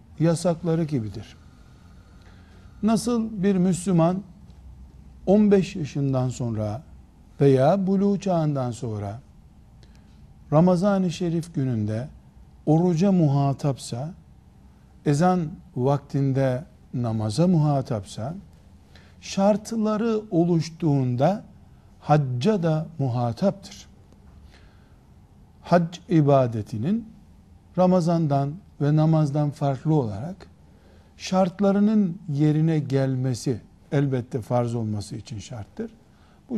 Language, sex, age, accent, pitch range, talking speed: Turkish, male, 60-79, native, 110-180 Hz, 70 wpm